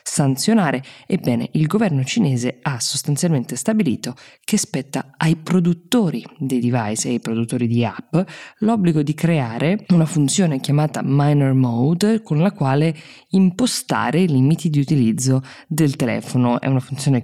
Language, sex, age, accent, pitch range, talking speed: Italian, female, 20-39, native, 125-160 Hz, 140 wpm